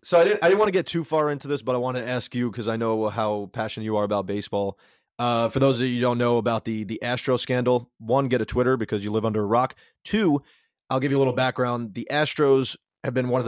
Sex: male